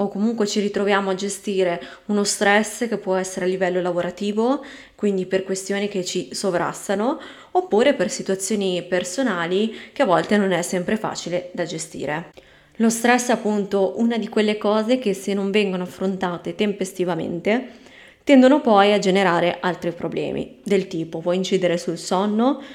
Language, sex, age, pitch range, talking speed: Italian, female, 20-39, 185-220 Hz, 155 wpm